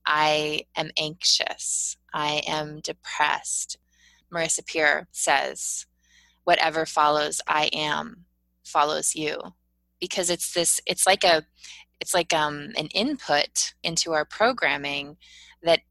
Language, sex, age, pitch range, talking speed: English, female, 20-39, 150-170 Hz, 115 wpm